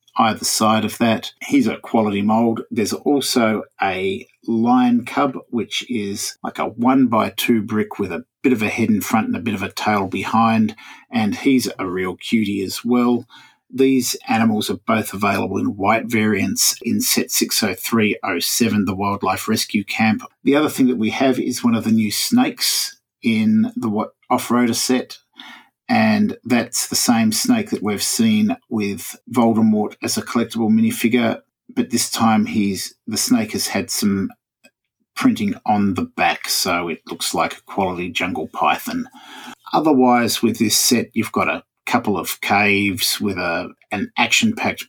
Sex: male